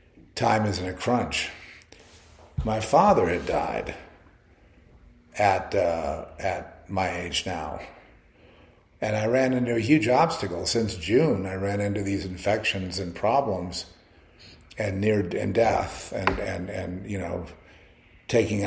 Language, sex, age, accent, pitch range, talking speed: English, male, 50-69, American, 90-110 Hz, 130 wpm